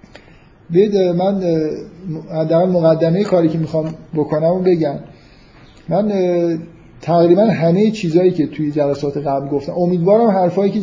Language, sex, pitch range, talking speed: Persian, male, 145-170 Hz, 110 wpm